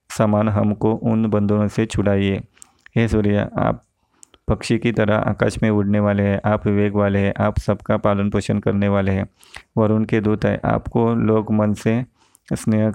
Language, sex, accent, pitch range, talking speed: Hindi, male, native, 105-110 Hz, 170 wpm